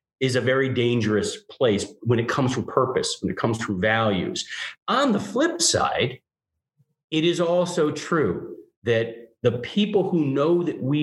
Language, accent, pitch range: English, American, 110-170 Hz